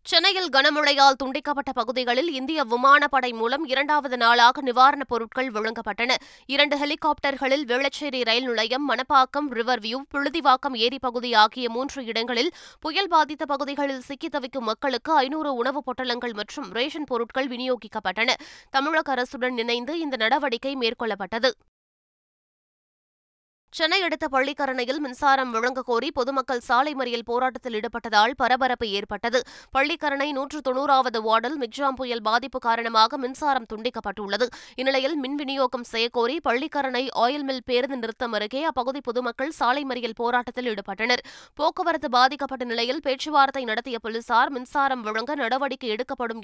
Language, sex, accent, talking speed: Tamil, female, native, 115 wpm